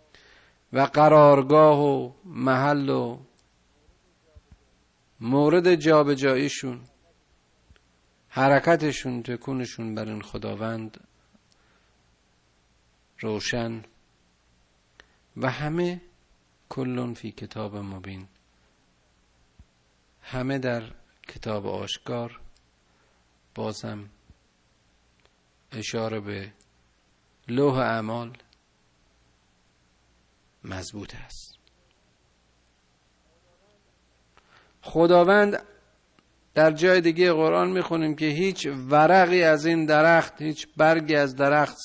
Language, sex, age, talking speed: Persian, male, 50-69, 70 wpm